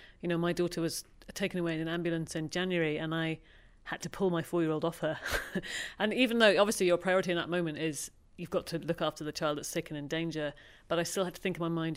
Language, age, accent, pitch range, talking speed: English, 40-59, British, 155-180 Hz, 260 wpm